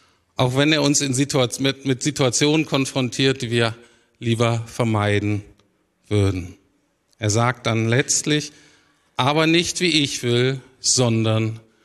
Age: 50-69